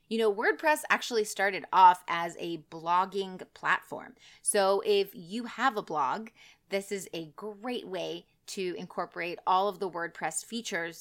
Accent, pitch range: American, 170-225 Hz